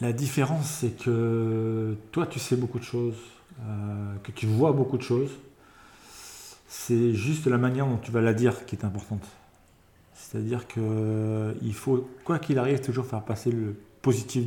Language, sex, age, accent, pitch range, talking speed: French, male, 40-59, French, 105-125 Hz, 165 wpm